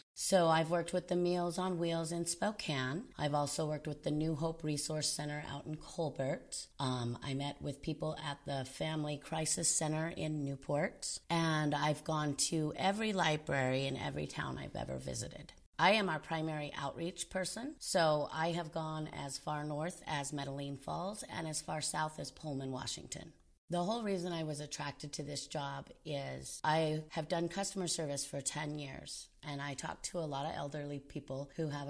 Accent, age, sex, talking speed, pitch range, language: American, 30-49, female, 185 wpm, 145-175 Hz, English